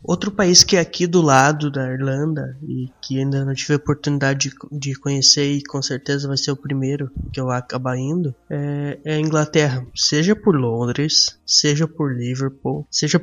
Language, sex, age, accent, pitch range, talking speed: Portuguese, male, 20-39, Brazilian, 135-155 Hz, 190 wpm